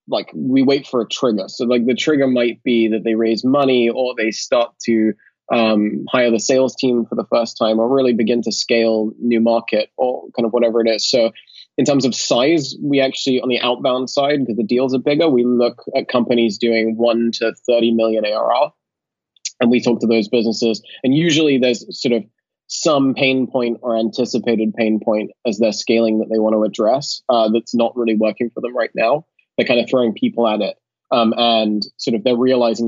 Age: 20-39